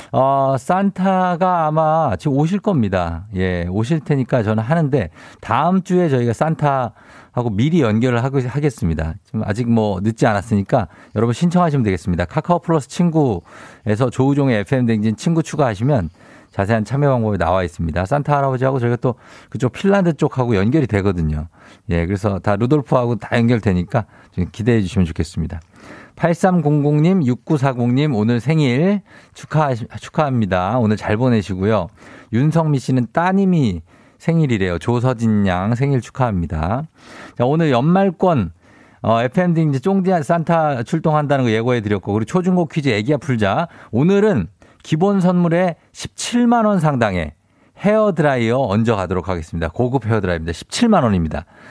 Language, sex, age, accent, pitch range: Korean, male, 50-69, native, 105-155 Hz